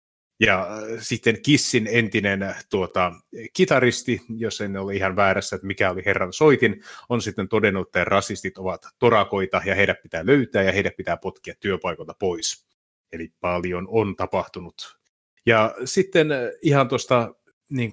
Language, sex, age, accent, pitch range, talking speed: Finnish, male, 30-49, native, 95-120 Hz, 140 wpm